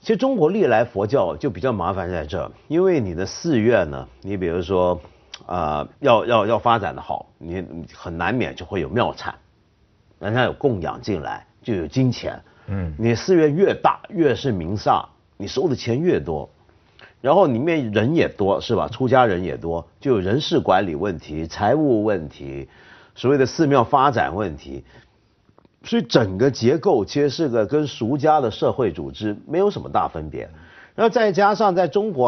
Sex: male